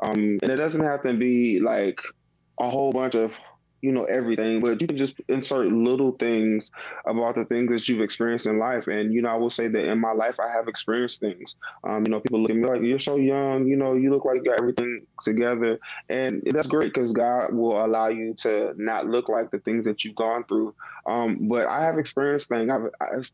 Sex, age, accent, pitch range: male, 20-39, American, 110-125 Hz